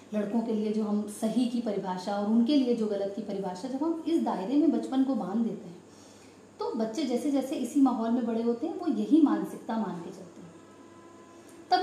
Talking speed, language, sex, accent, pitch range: 215 wpm, Hindi, female, native, 215-275 Hz